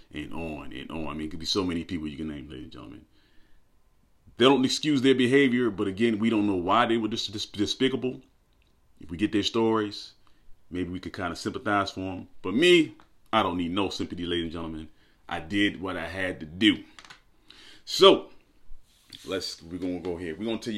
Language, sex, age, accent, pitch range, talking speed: English, male, 30-49, American, 85-110 Hz, 215 wpm